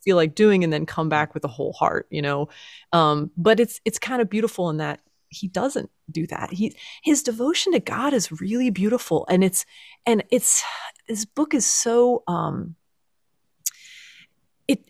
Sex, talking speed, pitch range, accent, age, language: female, 175 wpm, 165-220 Hz, American, 30-49, English